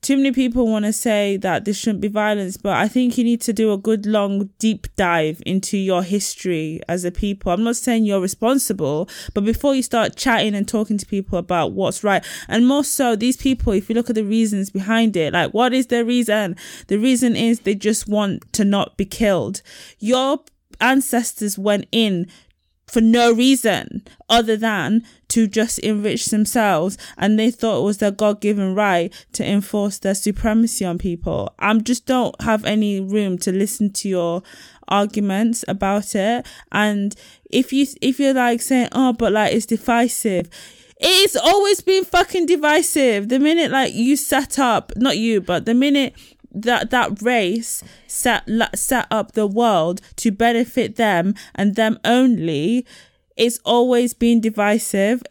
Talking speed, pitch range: 175 wpm, 200-245 Hz